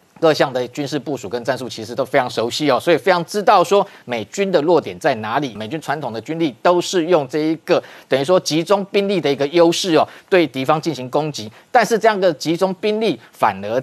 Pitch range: 140-180 Hz